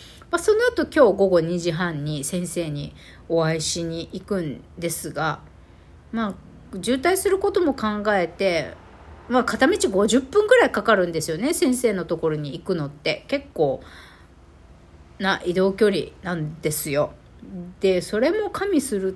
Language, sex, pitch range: Japanese, female, 165-255 Hz